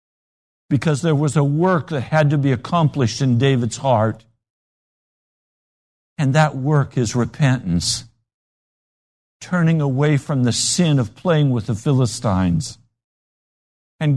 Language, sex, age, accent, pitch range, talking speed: English, male, 60-79, American, 115-160 Hz, 125 wpm